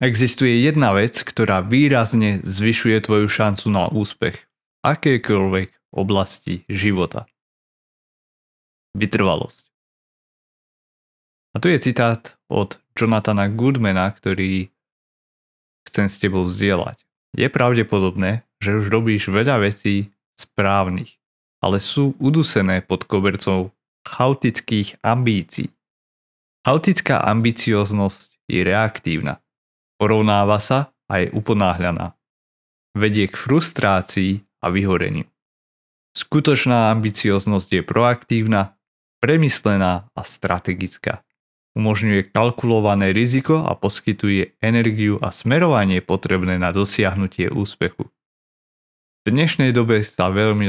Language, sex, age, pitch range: Slovak, male, 30-49, 95-115 Hz